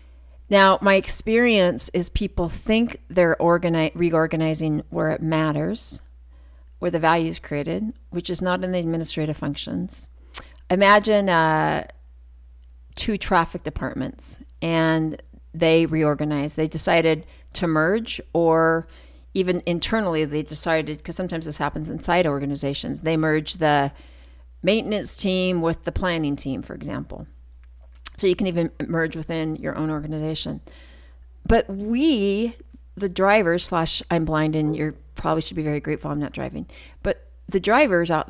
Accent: American